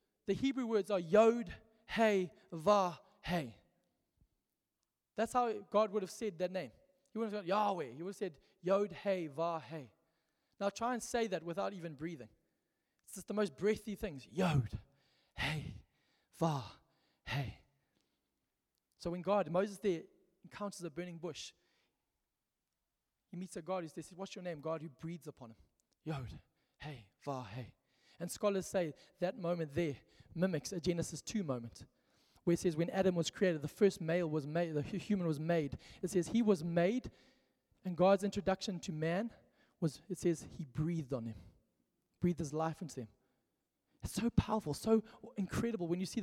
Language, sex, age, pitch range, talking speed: English, male, 20-39, 160-205 Hz, 170 wpm